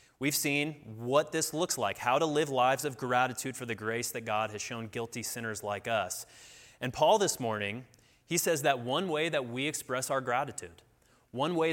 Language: English